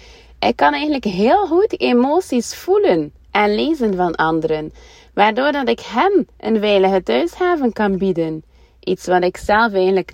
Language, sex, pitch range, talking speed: Dutch, female, 160-225 Hz, 150 wpm